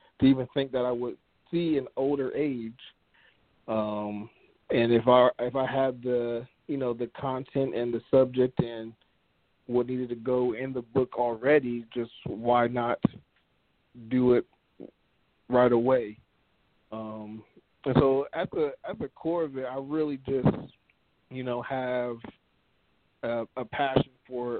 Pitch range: 120-135 Hz